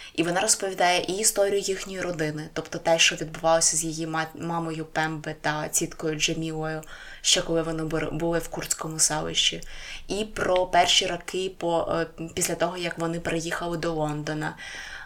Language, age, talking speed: Ukrainian, 20-39, 145 wpm